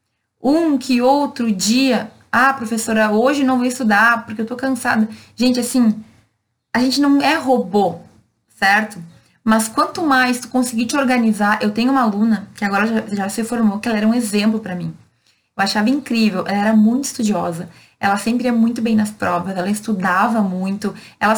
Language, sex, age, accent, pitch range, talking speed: Portuguese, female, 20-39, Brazilian, 215-255 Hz, 180 wpm